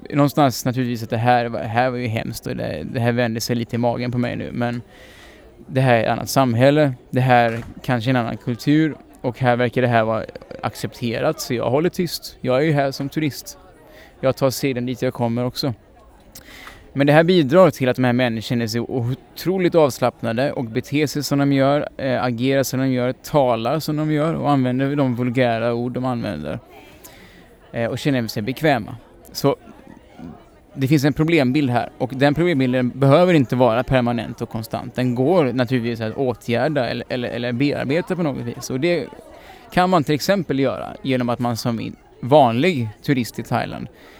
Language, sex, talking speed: Swedish, male, 185 wpm